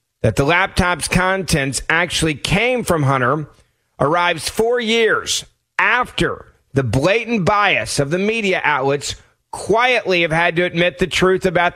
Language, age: English, 40-59